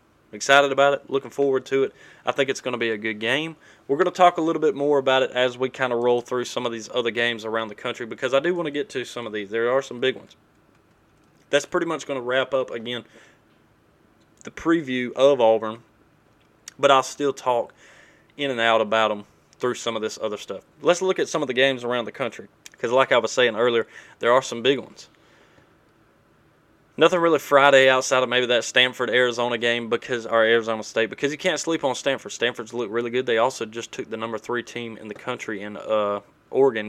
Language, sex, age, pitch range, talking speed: English, male, 20-39, 110-140 Hz, 230 wpm